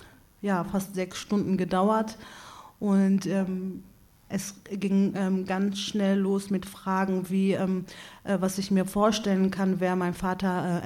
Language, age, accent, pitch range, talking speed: German, 40-59, German, 175-195 Hz, 150 wpm